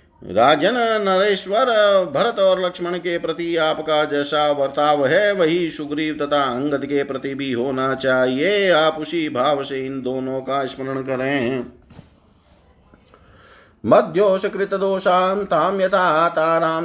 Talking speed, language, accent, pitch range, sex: 120 wpm, Hindi, native, 130-170 Hz, male